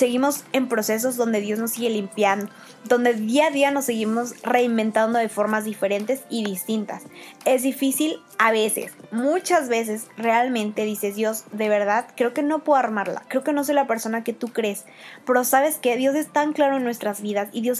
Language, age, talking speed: Spanish, 20-39, 190 wpm